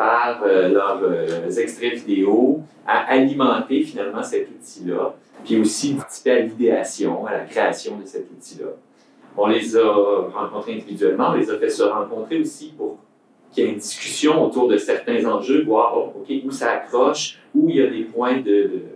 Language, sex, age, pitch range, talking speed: French, male, 40-59, 275-425 Hz, 175 wpm